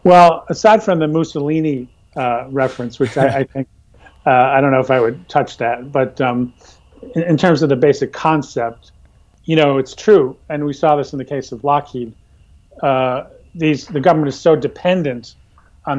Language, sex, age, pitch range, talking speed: English, male, 40-59, 120-145 Hz, 190 wpm